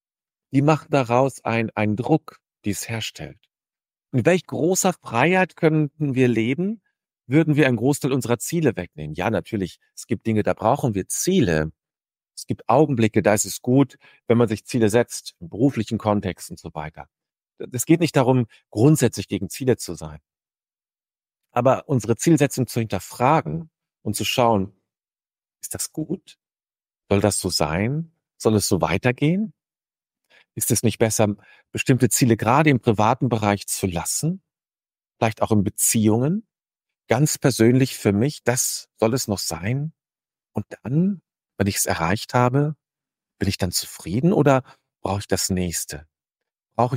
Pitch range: 100-135 Hz